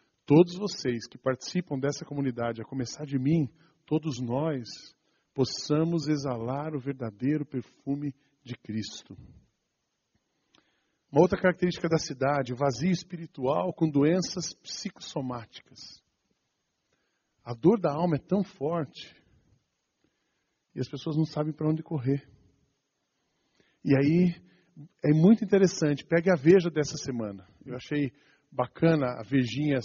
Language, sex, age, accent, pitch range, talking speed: Portuguese, male, 40-59, Brazilian, 135-165 Hz, 120 wpm